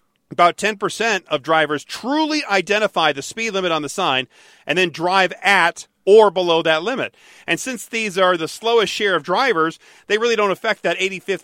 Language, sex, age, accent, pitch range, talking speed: English, male, 40-59, American, 155-205 Hz, 185 wpm